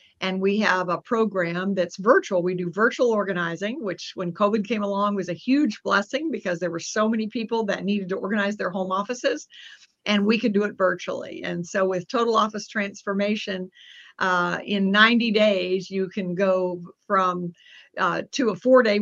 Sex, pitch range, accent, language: female, 185-215 Hz, American, English